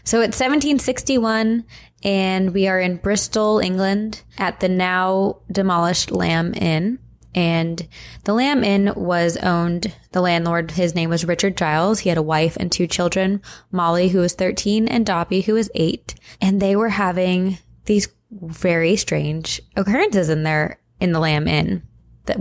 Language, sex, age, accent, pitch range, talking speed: English, female, 20-39, American, 165-195 Hz, 155 wpm